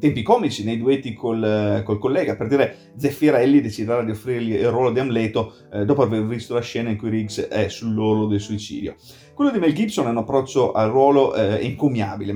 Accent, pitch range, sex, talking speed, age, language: native, 105-125 Hz, male, 200 wpm, 30-49, Italian